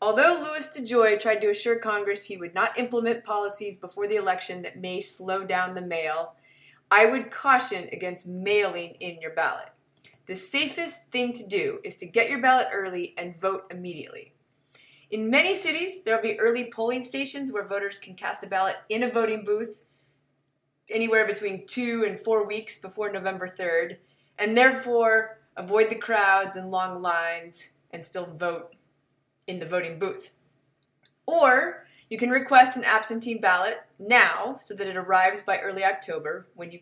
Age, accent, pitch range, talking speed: 20-39, American, 175-235 Hz, 165 wpm